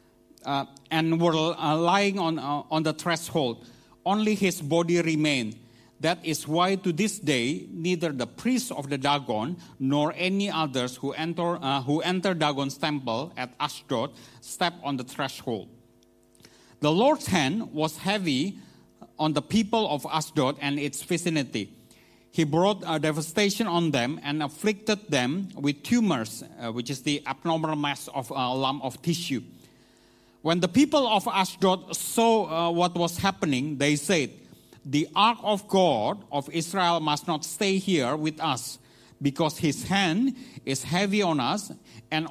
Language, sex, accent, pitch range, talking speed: English, male, Indonesian, 135-180 Hz, 155 wpm